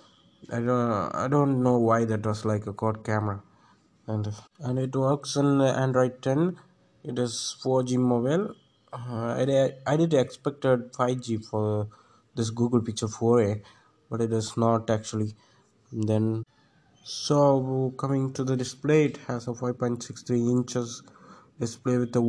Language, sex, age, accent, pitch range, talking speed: English, male, 20-39, Indian, 115-135 Hz, 150 wpm